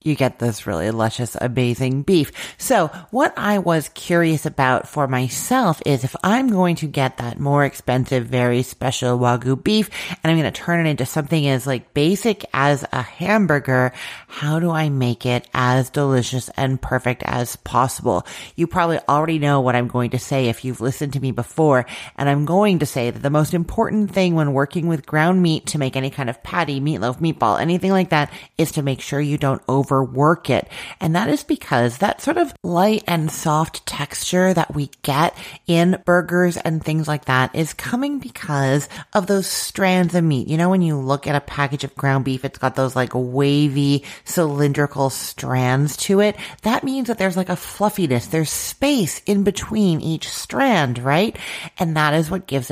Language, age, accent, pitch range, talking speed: English, 30-49, American, 130-175 Hz, 195 wpm